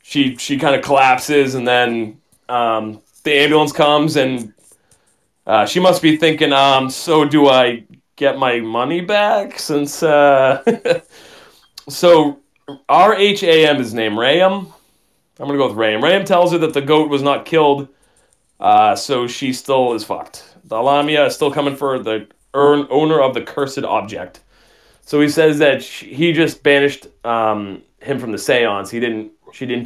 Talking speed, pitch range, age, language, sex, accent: 165 wpm, 125-160 Hz, 30-49, English, male, American